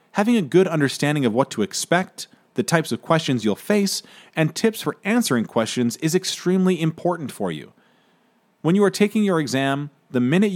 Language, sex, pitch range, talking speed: English, male, 125-195 Hz, 180 wpm